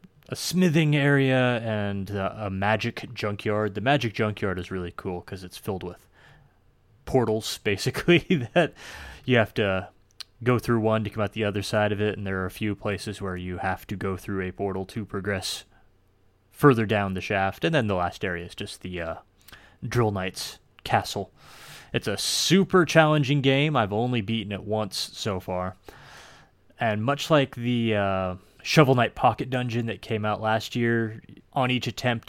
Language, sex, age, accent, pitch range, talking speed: English, male, 20-39, American, 95-120 Hz, 180 wpm